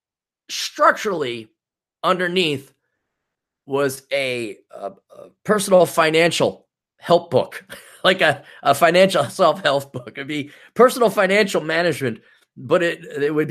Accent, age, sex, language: American, 30-49, male, English